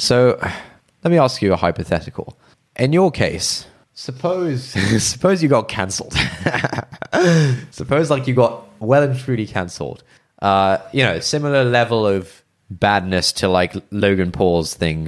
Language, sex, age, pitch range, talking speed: English, male, 20-39, 90-130 Hz, 140 wpm